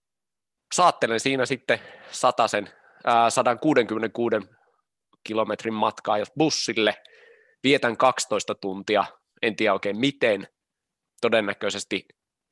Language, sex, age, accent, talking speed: Finnish, male, 20-39, native, 85 wpm